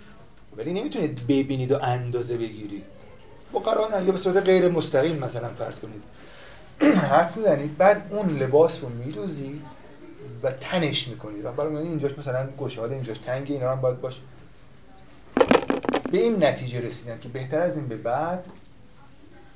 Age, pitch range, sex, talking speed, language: 30-49, 120-165 Hz, male, 145 wpm, Persian